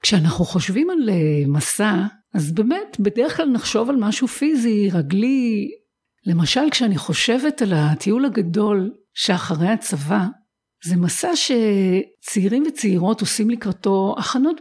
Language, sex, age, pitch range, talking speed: Hebrew, female, 50-69, 185-240 Hz, 115 wpm